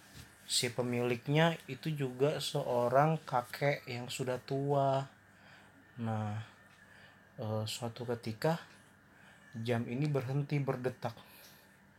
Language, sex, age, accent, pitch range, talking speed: Indonesian, male, 30-49, native, 100-125 Hz, 80 wpm